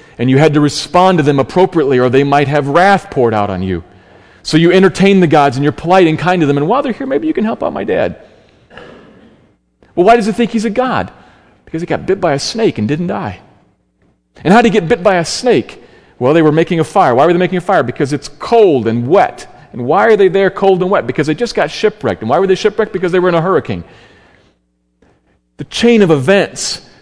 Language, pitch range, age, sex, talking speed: English, 115-180 Hz, 40-59, male, 250 wpm